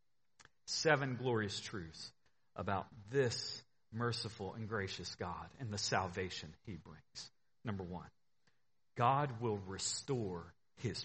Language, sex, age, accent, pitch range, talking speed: English, male, 40-59, American, 120-190 Hz, 110 wpm